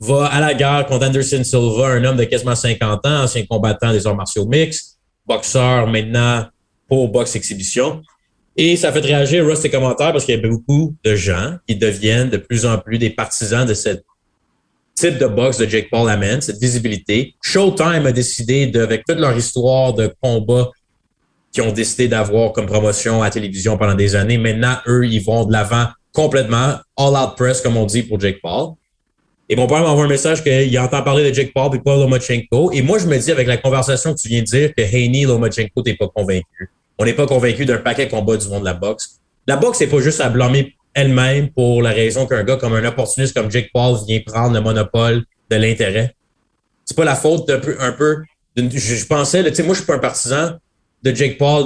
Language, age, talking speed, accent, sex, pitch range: French, 30-49, 220 wpm, Canadian, male, 110-135 Hz